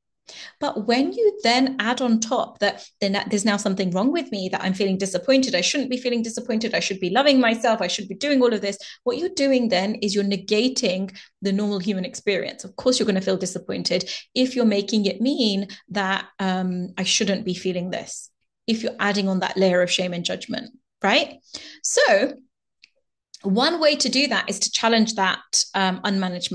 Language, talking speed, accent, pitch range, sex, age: English, 200 wpm, British, 195-245 Hz, female, 30-49